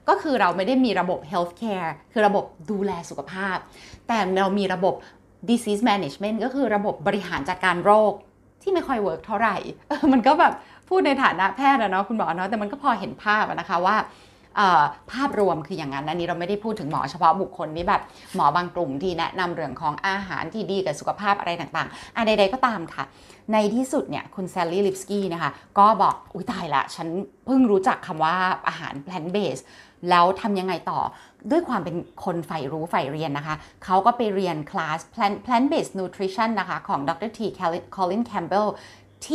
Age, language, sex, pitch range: 20-39, Thai, female, 175-220 Hz